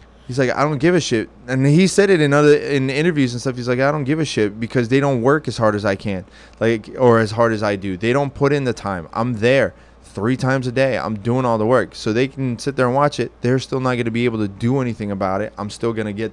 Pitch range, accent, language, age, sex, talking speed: 105-135 Hz, American, English, 20-39, male, 300 wpm